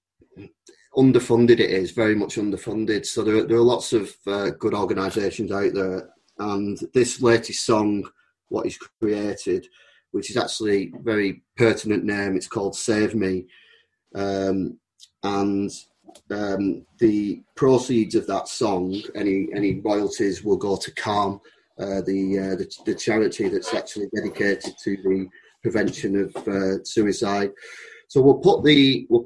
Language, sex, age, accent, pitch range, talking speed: English, male, 30-49, British, 95-110 Hz, 145 wpm